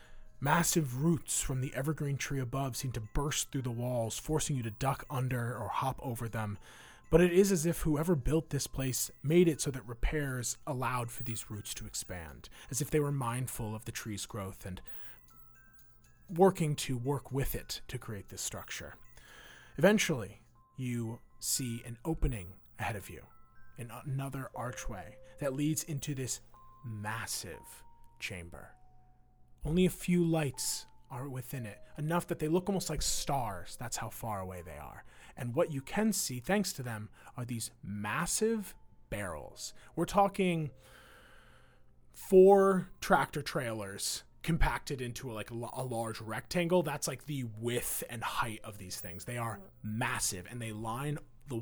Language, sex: English, male